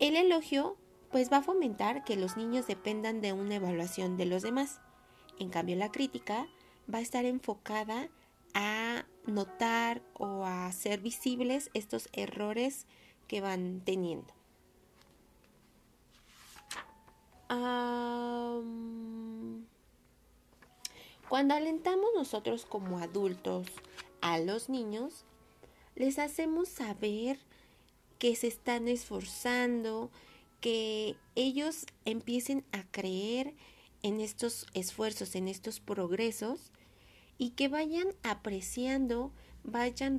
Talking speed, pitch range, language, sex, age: 100 wpm, 205-265 Hz, Spanish, female, 30-49